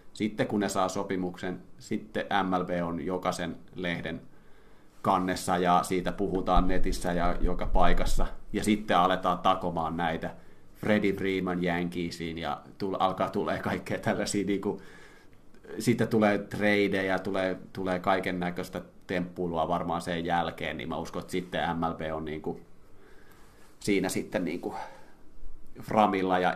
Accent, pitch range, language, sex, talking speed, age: native, 85-100 Hz, Finnish, male, 140 wpm, 30-49